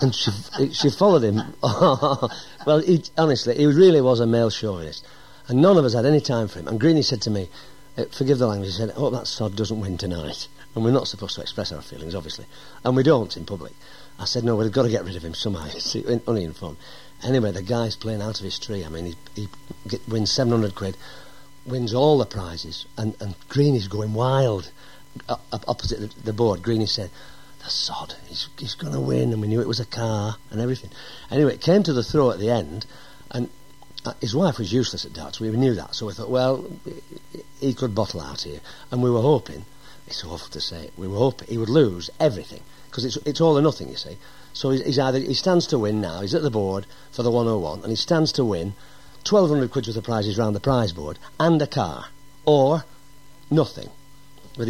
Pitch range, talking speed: 100-135 Hz, 215 wpm